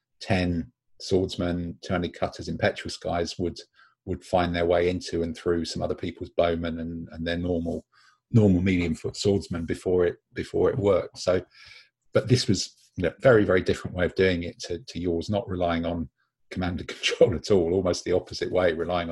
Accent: British